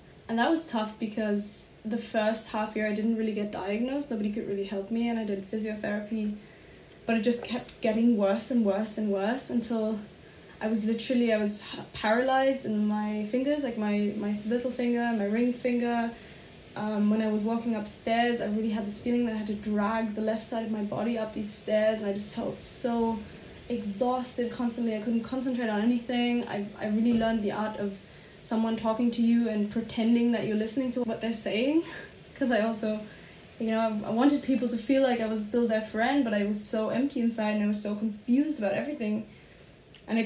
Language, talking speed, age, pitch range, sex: English, 205 wpm, 10-29, 210-235 Hz, female